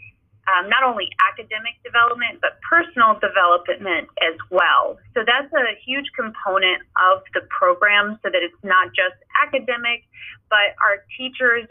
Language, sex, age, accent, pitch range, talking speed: English, female, 30-49, American, 195-255 Hz, 140 wpm